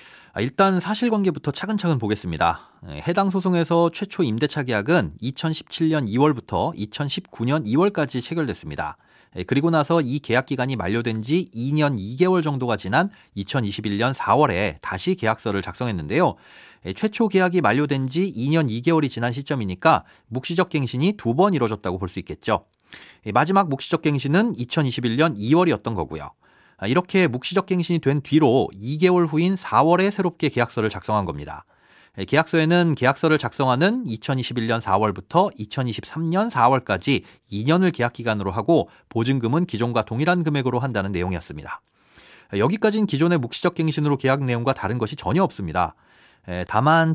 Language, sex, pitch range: Korean, male, 115-170 Hz